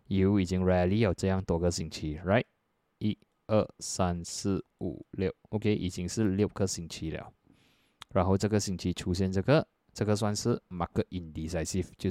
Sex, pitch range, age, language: male, 85-105 Hz, 20-39, Chinese